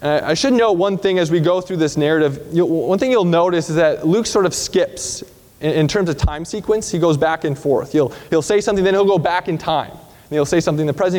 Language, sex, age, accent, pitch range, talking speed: English, male, 20-39, American, 150-205 Hz, 255 wpm